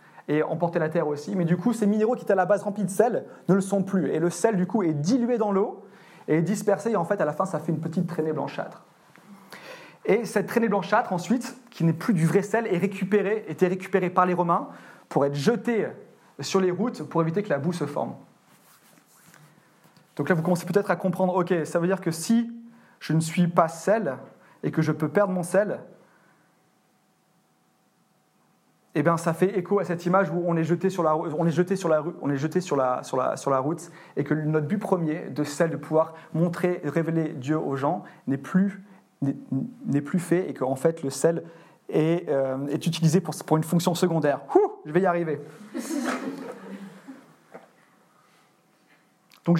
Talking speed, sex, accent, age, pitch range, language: 190 wpm, male, French, 30-49, 155-200 Hz, French